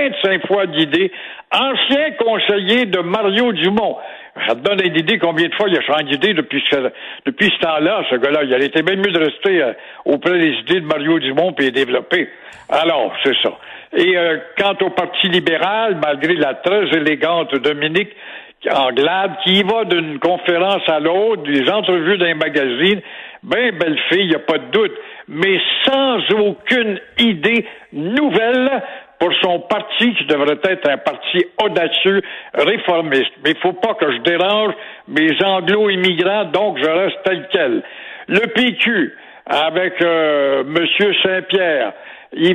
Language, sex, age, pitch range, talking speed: French, male, 60-79, 165-215 Hz, 165 wpm